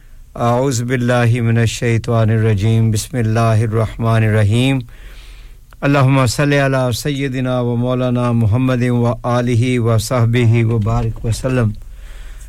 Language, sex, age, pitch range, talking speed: English, male, 60-79, 115-135 Hz, 85 wpm